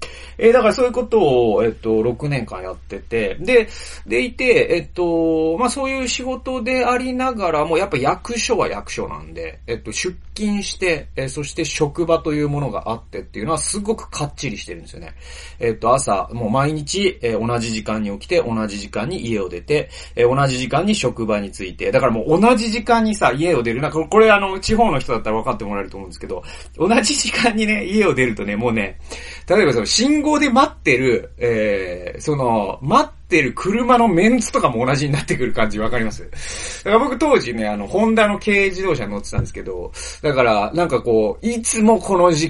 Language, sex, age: Japanese, male, 30-49